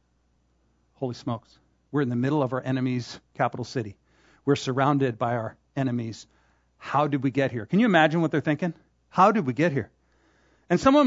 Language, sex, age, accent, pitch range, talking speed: English, male, 40-59, American, 110-150 Hz, 185 wpm